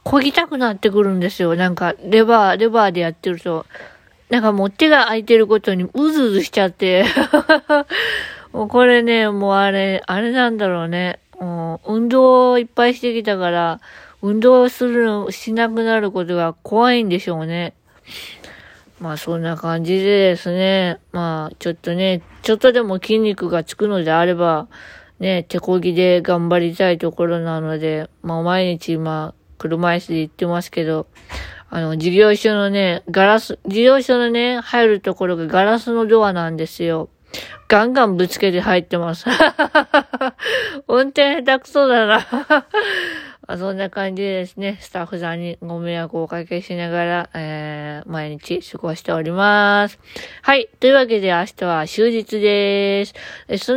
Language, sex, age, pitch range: Japanese, female, 20-39, 170-230 Hz